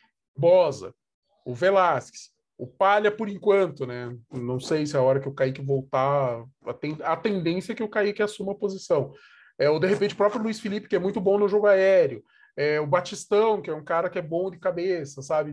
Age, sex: 20-39, male